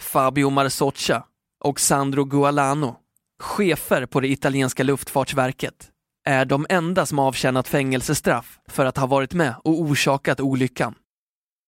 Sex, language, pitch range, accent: male, Swedish, 130-150 Hz, native